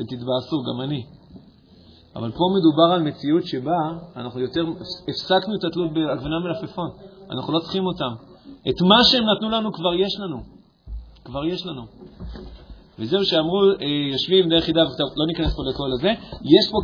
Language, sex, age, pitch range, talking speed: Hebrew, male, 40-59, 145-195 Hz, 100 wpm